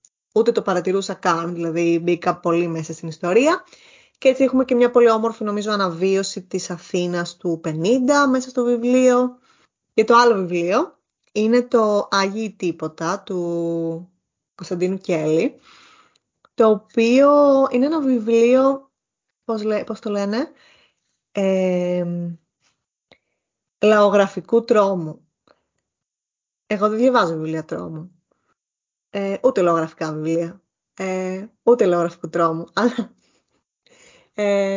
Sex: female